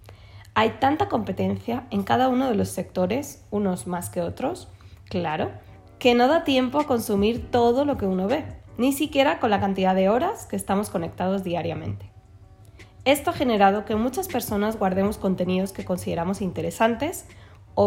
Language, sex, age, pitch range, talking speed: Spanish, female, 20-39, 180-230 Hz, 160 wpm